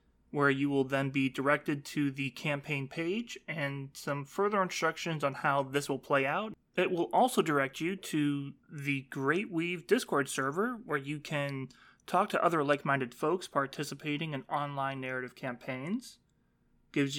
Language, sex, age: English, male, 30-49